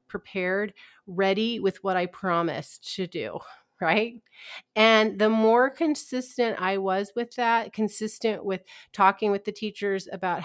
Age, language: 30-49, English